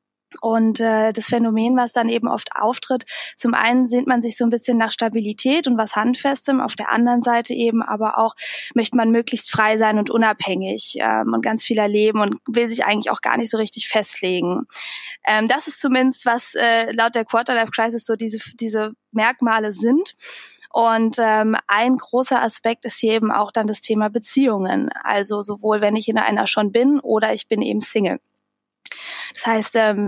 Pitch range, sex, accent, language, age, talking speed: 220-250 Hz, female, German, German, 20-39, 185 wpm